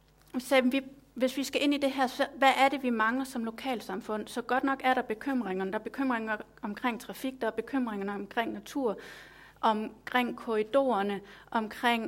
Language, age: Danish, 30-49